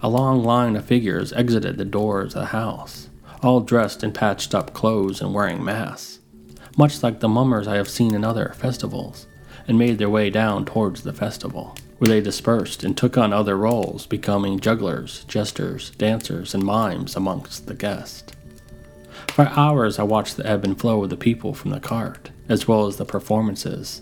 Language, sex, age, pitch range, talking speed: English, male, 30-49, 100-120 Hz, 180 wpm